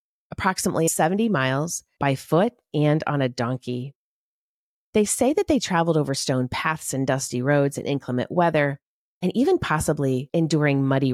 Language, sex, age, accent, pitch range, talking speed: English, female, 30-49, American, 130-160 Hz, 150 wpm